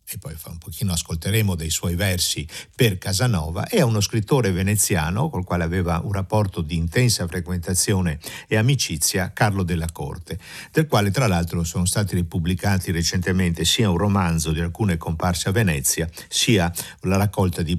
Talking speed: 160 wpm